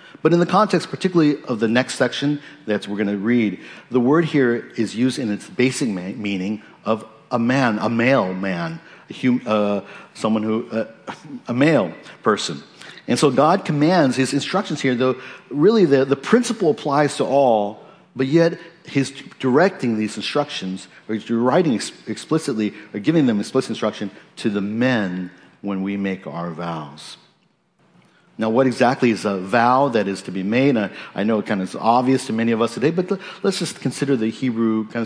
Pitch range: 100-140 Hz